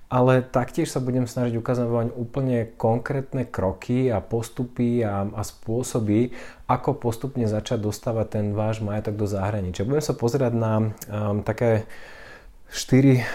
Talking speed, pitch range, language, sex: 135 wpm, 105-120 Hz, Slovak, male